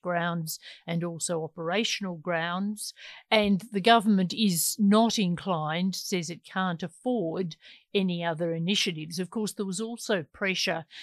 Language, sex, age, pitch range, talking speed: English, female, 50-69, 170-195 Hz, 130 wpm